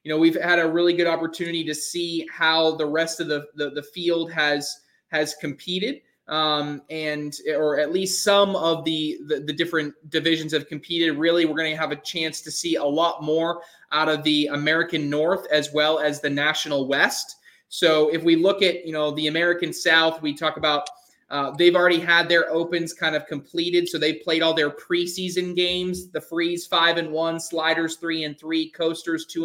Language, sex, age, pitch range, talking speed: English, male, 20-39, 155-170 Hz, 200 wpm